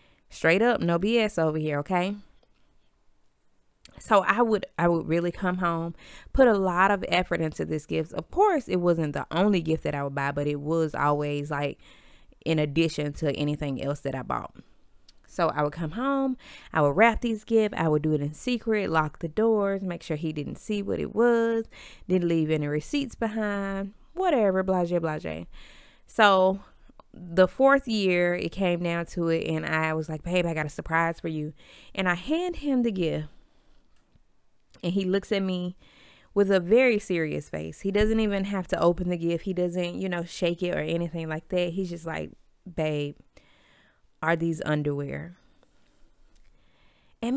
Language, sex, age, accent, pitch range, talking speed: English, female, 20-39, American, 160-220 Hz, 185 wpm